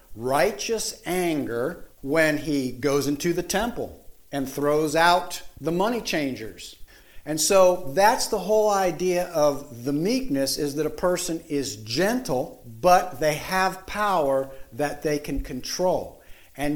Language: English